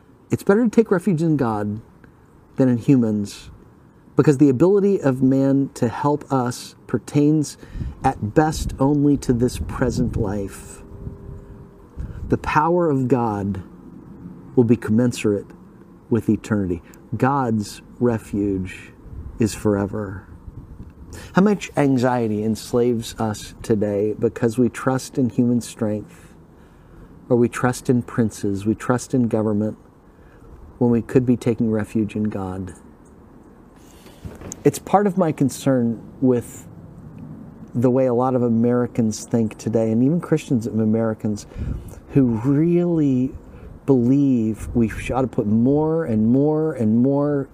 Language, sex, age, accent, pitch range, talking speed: English, male, 40-59, American, 110-135 Hz, 125 wpm